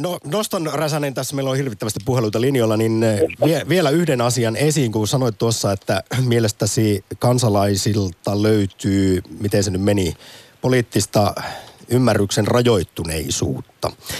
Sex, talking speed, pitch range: male, 125 wpm, 100-130 Hz